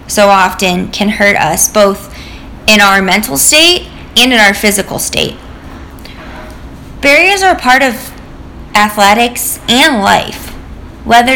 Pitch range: 200-255 Hz